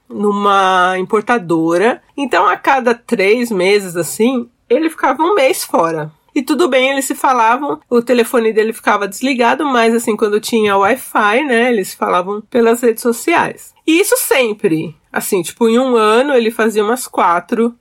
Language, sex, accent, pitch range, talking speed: Portuguese, female, Brazilian, 200-270 Hz, 160 wpm